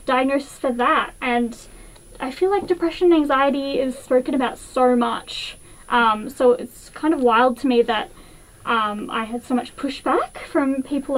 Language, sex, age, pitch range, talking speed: English, female, 20-39, 230-265 Hz, 170 wpm